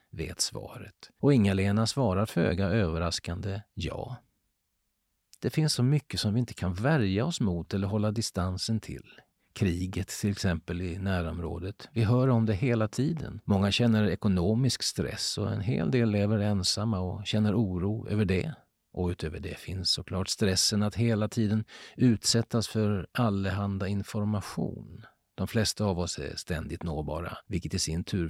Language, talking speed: Swedish, 155 wpm